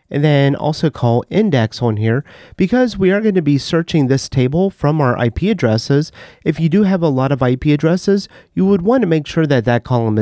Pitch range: 125-170 Hz